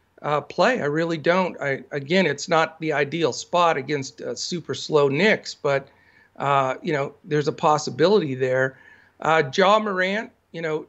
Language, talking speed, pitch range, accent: English, 160 wpm, 145-180 Hz, American